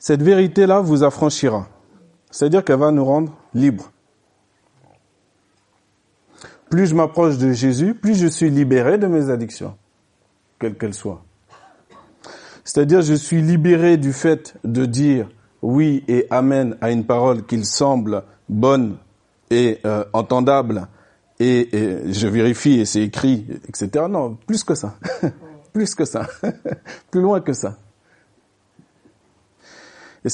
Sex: male